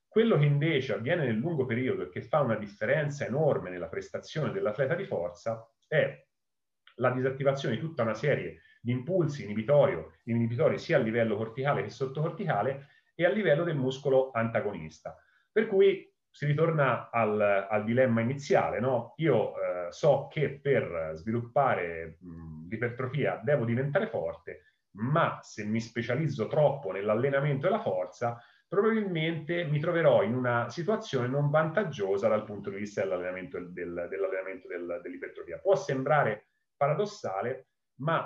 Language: Italian